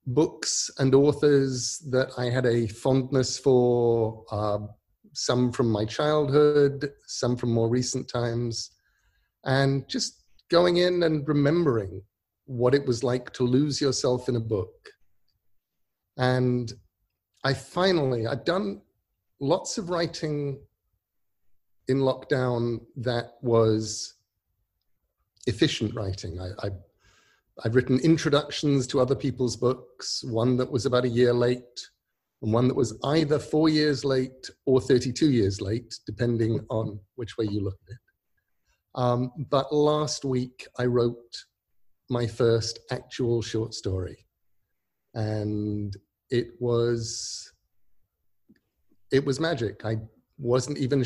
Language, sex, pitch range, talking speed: English, male, 110-135 Hz, 125 wpm